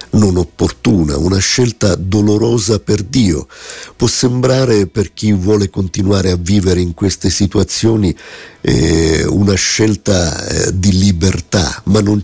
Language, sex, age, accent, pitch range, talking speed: Italian, male, 50-69, native, 80-100 Hz, 120 wpm